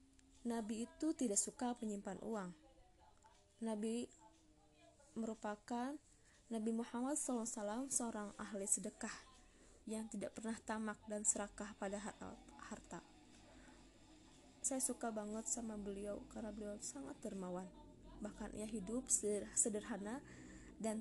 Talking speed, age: 105 wpm, 20-39